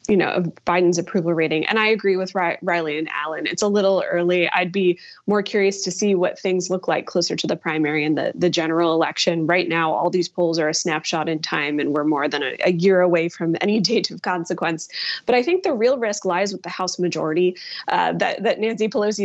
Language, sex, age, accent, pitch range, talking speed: English, female, 20-39, American, 170-205 Hz, 235 wpm